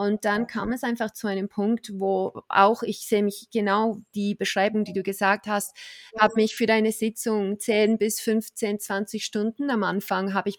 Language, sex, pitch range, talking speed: German, female, 195-215 Hz, 195 wpm